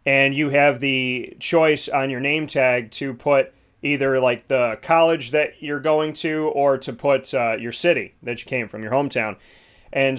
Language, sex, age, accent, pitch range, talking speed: English, male, 30-49, American, 130-150 Hz, 190 wpm